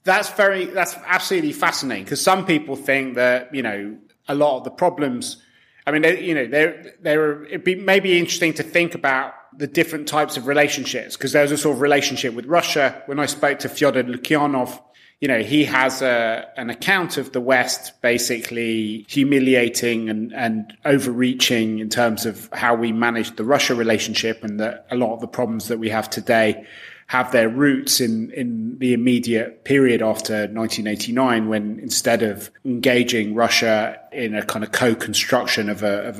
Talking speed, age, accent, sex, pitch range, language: 180 wpm, 30-49, British, male, 110-145 Hz, English